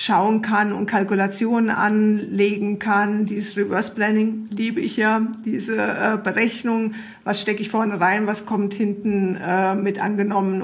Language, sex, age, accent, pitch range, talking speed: German, female, 50-69, German, 200-225 Hz, 145 wpm